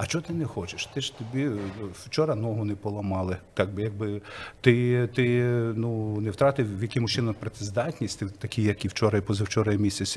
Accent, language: native, Ukrainian